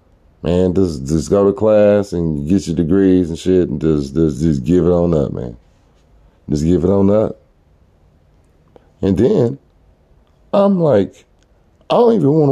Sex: male